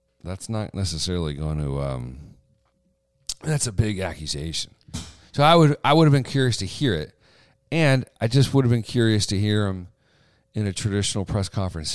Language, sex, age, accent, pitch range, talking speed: English, male, 40-59, American, 80-120 Hz, 180 wpm